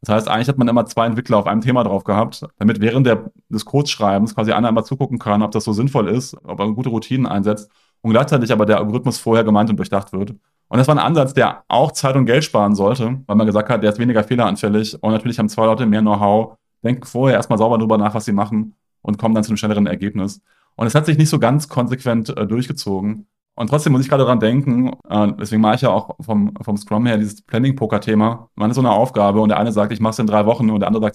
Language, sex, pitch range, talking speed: German, male, 105-120 Hz, 255 wpm